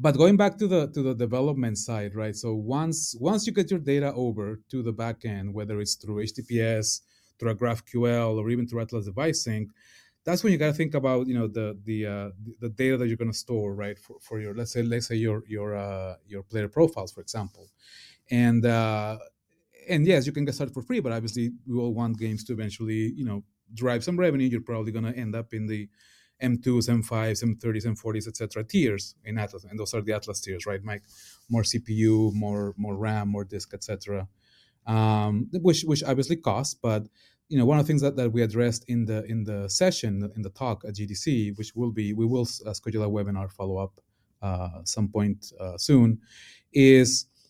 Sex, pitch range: male, 105-130 Hz